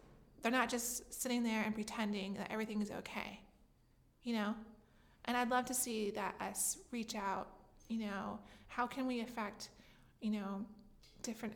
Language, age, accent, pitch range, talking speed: English, 20-39, American, 210-235 Hz, 160 wpm